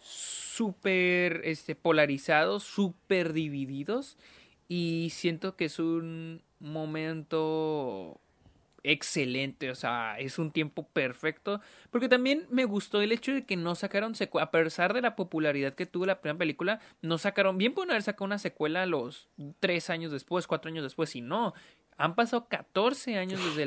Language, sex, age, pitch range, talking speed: Spanish, male, 30-49, 150-195 Hz, 155 wpm